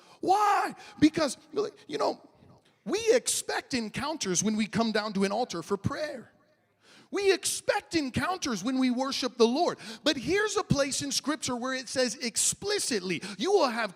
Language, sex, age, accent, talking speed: English, male, 40-59, American, 160 wpm